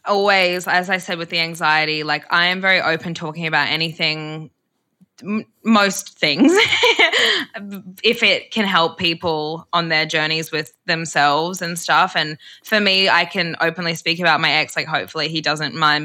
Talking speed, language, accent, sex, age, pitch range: 165 wpm, English, Australian, female, 20-39, 155-180 Hz